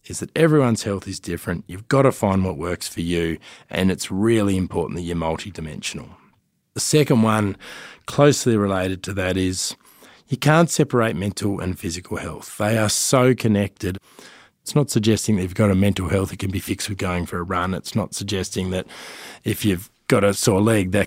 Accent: Australian